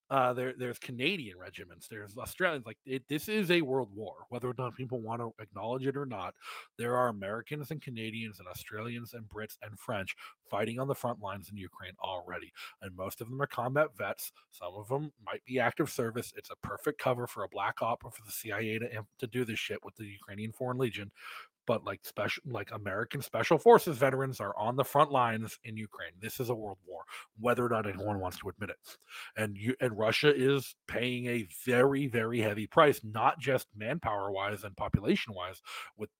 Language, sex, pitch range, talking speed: English, male, 105-135 Hz, 210 wpm